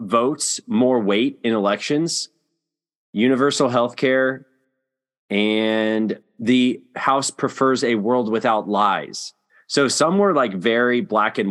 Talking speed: 120 wpm